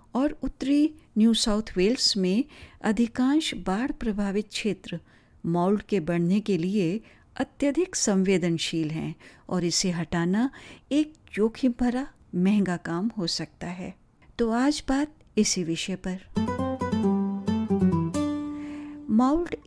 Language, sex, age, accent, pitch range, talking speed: Hindi, female, 50-69, native, 185-235 Hz, 110 wpm